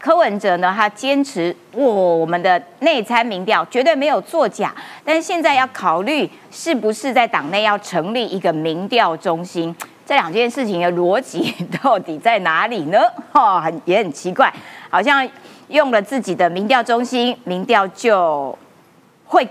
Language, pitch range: Chinese, 195-300 Hz